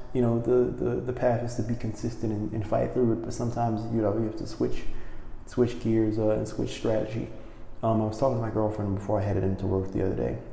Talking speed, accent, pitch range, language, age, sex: 250 wpm, American, 105-115 Hz, English, 20-39, male